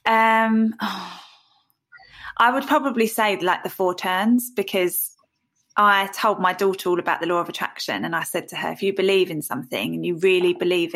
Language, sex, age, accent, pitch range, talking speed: English, female, 20-39, British, 180-215 Hz, 190 wpm